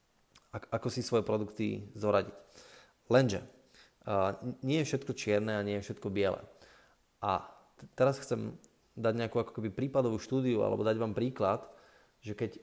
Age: 20-39